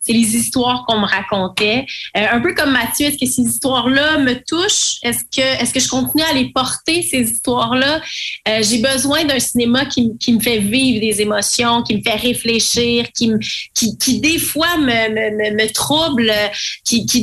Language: French